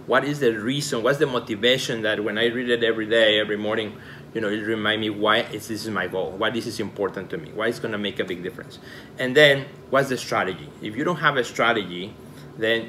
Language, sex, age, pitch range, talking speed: English, male, 30-49, 115-135 Hz, 240 wpm